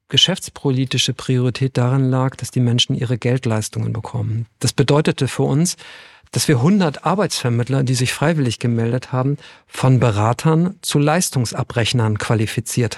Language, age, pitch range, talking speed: German, 50-69, 120-140 Hz, 130 wpm